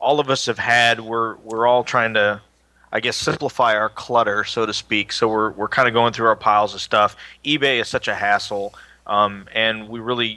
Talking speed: 220 wpm